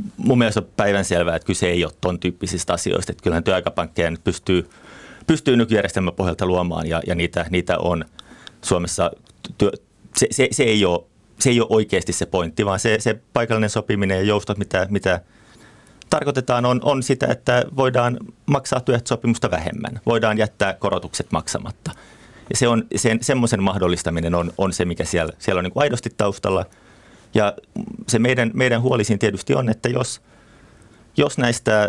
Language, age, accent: Finnish, 30-49, native